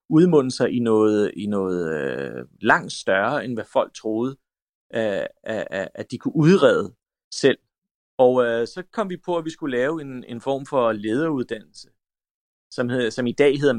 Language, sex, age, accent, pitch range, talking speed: English, male, 30-49, Danish, 110-135 Hz, 155 wpm